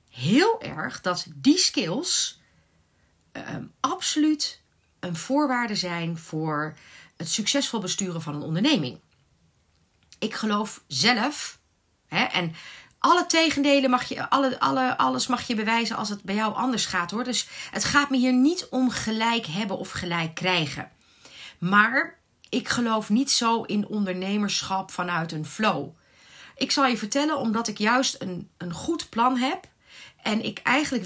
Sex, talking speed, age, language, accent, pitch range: female, 135 wpm, 40-59, Dutch, Dutch, 190-275 Hz